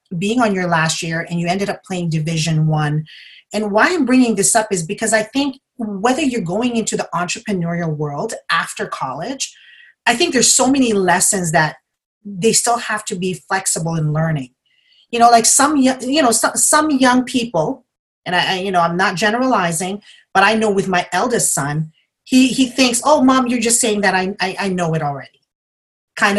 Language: English